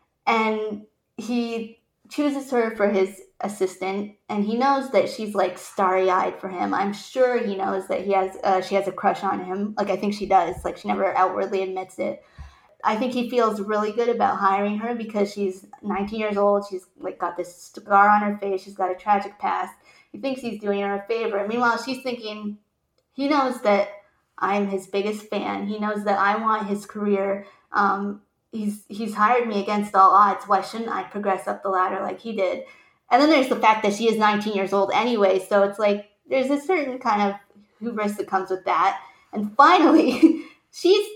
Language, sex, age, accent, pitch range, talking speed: English, female, 20-39, American, 200-245 Hz, 205 wpm